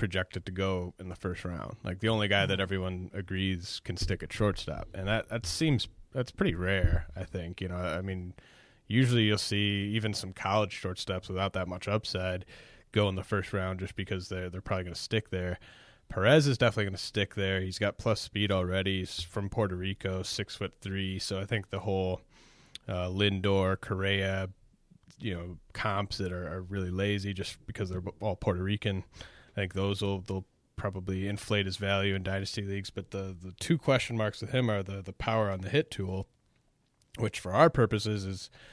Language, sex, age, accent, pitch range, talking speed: English, male, 20-39, American, 95-105 Hz, 200 wpm